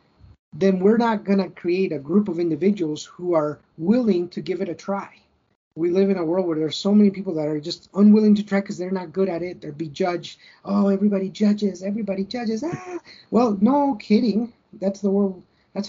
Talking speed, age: 215 wpm, 30-49